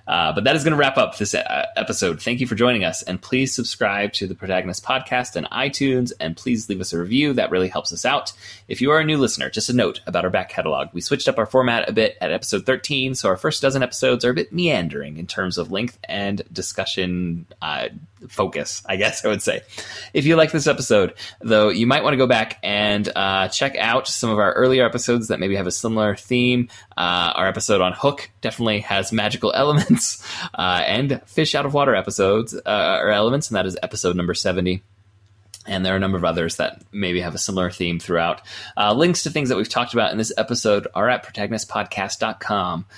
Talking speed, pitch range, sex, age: 225 wpm, 95-130 Hz, male, 30-49